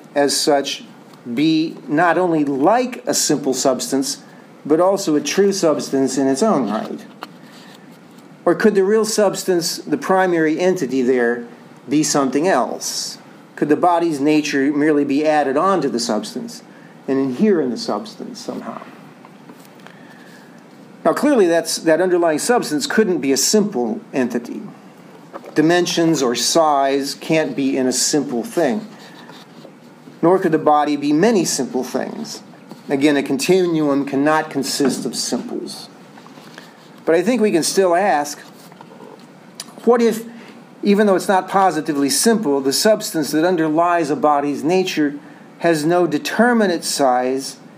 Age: 50-69